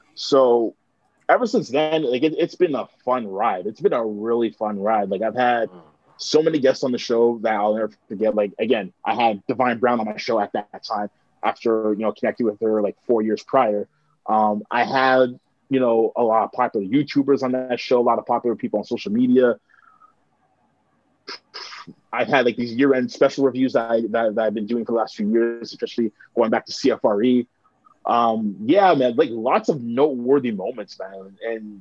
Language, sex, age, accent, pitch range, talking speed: English, male, 20-39, American, 105-130 Hz, 205 wpm